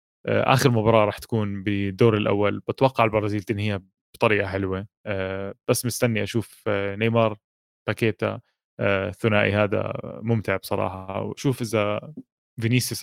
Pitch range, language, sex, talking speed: 100-115 Hz, Arabic, male, 105 wpm